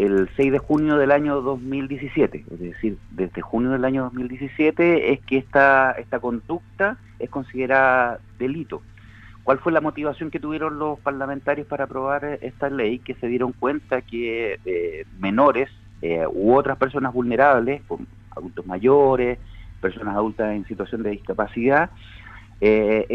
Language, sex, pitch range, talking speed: Spanish, male, 110-145 Hz, 145 wpm